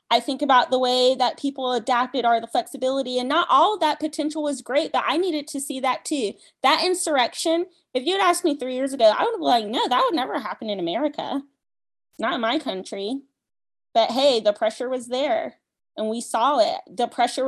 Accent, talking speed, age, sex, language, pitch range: American, 215 wpm, 20-39, female, English, 235-295 Hz